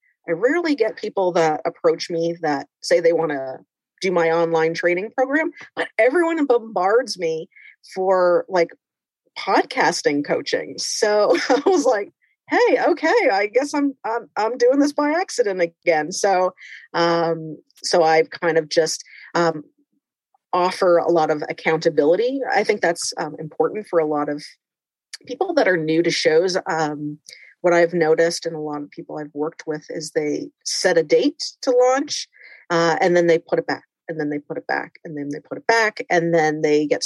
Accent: American